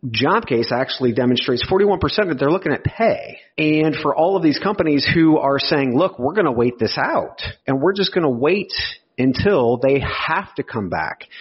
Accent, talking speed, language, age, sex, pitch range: American, 200 wpm, English, 40-59, male, 125-165 Hz